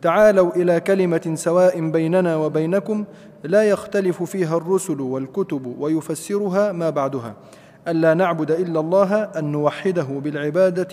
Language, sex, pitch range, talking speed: Arabic, male, 170-200 Hz, 115 wpm